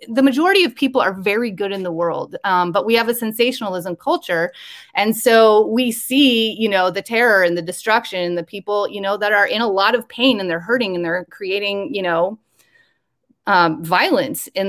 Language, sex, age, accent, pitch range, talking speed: English, female, 30-49, American, 195-260 Hz, 210 wpm